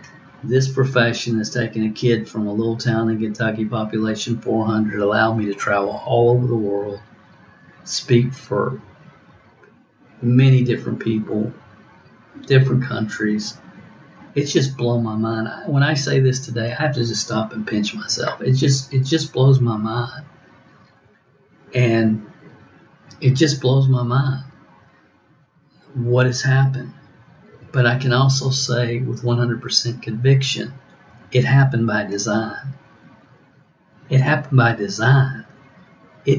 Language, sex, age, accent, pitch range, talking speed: English, male, 50-69, American, 110-130 Hz, 130 wpm